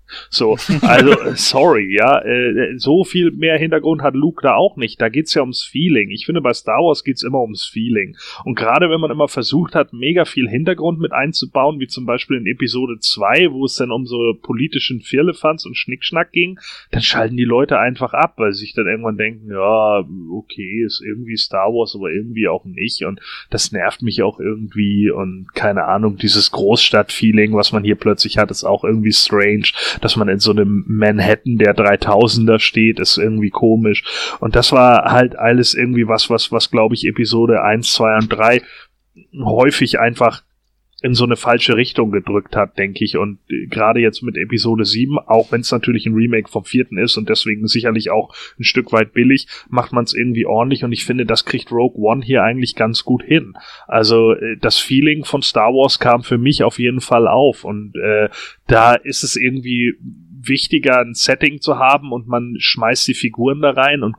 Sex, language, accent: male, German, German